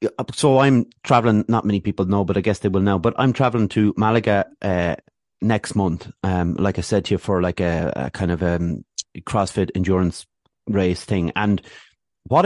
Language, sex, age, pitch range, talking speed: English, male, 30-49, 95-130 Hz, 195 wpm